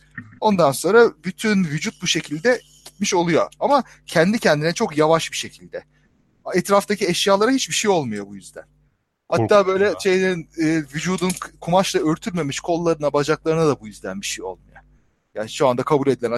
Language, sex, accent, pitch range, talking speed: Turkish, male, native, 135-190 Hz, 145 wpm